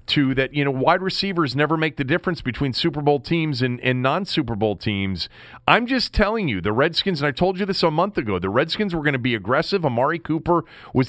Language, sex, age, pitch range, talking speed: English, male, 40-59, 125-170 Hz, 235 wpm